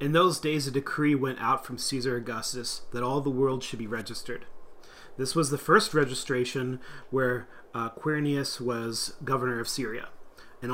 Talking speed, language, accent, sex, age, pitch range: 170 wpm, English, American, male, 30-49, 120-145 Hz